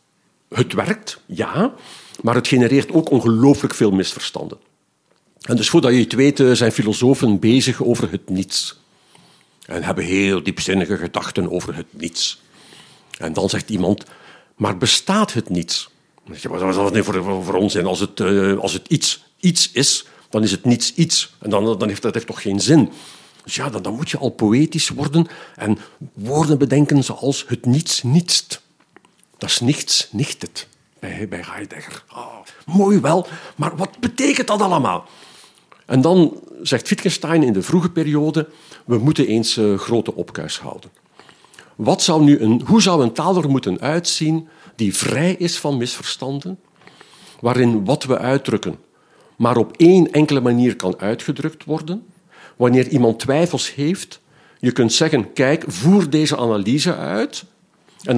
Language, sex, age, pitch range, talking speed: Dutch, male, 50-69, 115-165 Hz, 150 wpm